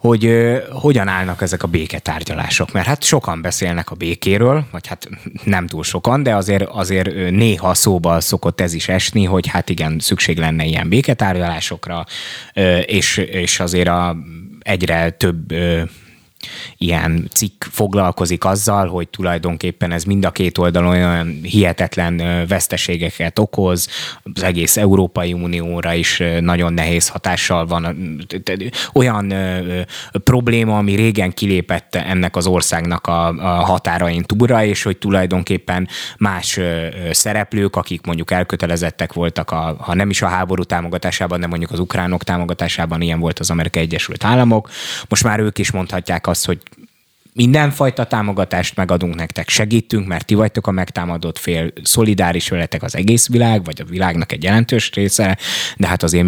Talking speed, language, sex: 140 wpm, Hungarian, male